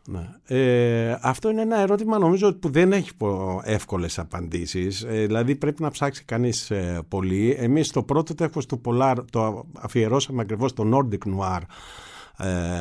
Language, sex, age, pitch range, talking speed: Greek, male, 50-69, 100-130 Hz, 155 wpm